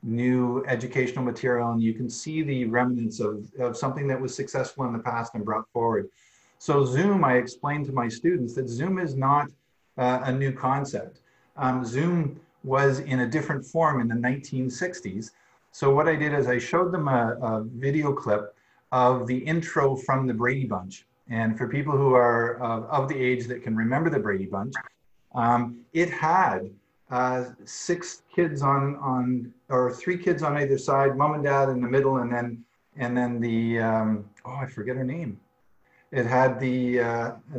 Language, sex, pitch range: English, male, 120-145 Hz